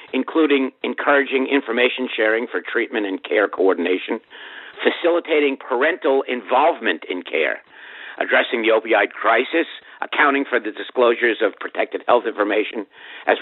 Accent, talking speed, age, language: American, 120 wpm, 50-69, English